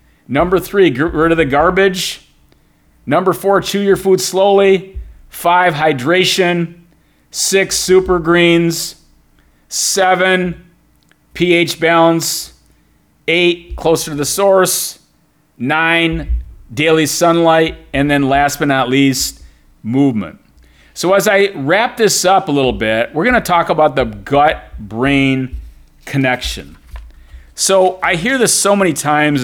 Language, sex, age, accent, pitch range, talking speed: English, male, 40-59, American, 125-175 Hz, 120 wpm